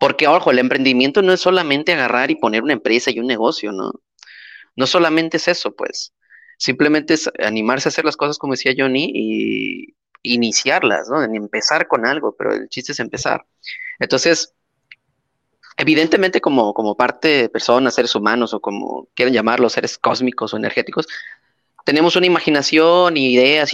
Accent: Mexican